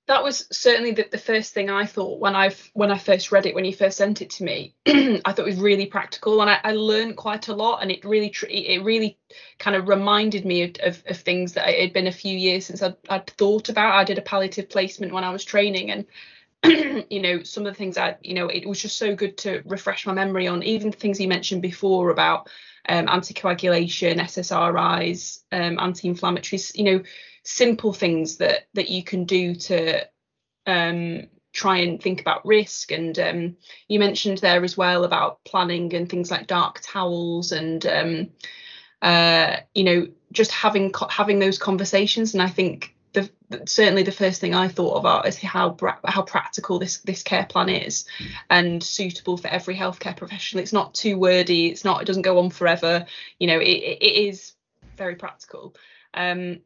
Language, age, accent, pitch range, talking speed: English, 20-39, British, 180-205 Hz, 200 wpm